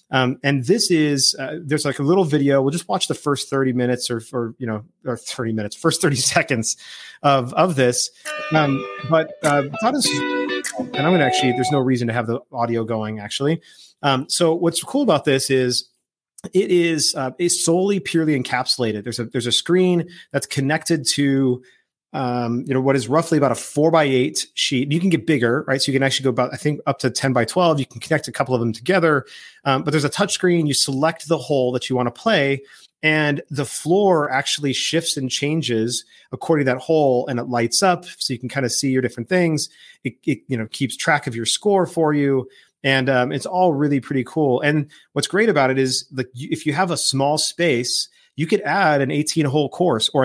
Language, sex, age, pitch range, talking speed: English, male, 30-49, 125-160 Hz, 220 wpm